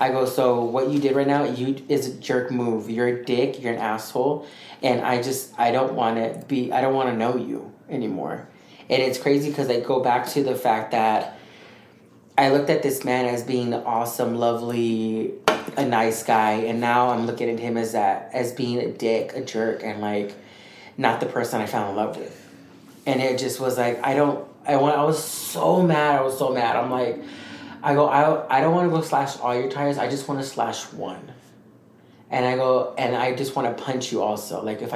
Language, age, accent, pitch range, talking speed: English, 30-49, American, 120-140 Hz, 225 wpm